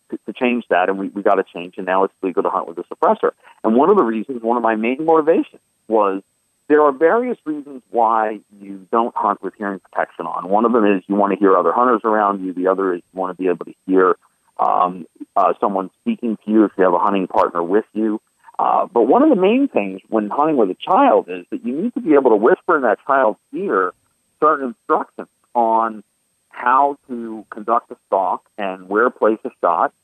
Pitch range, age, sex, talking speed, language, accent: 100-140 Hz, 40-59, male, 230 wpm, English, American